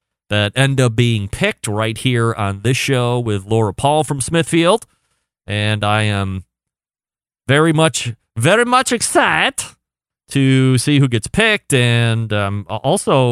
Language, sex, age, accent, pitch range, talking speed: English, male, 30-49, American, 110-140 Hz, 145 wpm